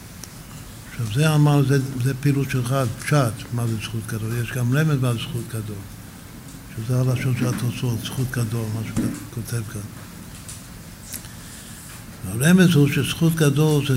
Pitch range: 110-135 Hz